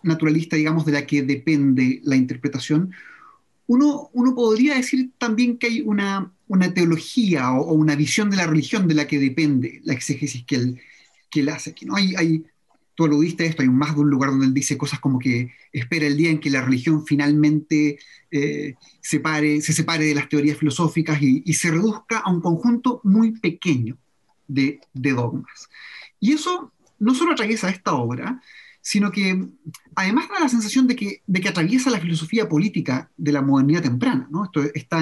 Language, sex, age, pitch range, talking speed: Spanish, male, 30-49, 145-195 Hz, 185 wpm